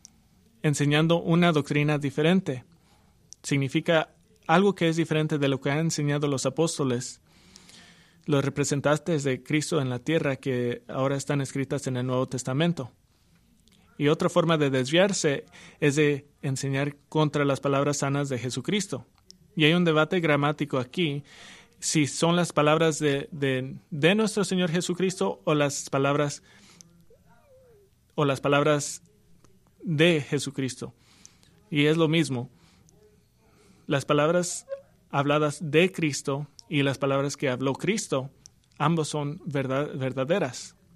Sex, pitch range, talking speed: male, 135-165 Hz, 125 wpm